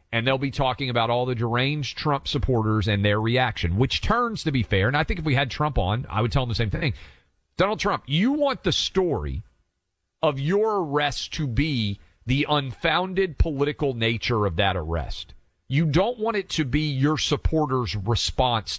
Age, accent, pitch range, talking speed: 40-59, American, 115-155 Hz, 190 wpm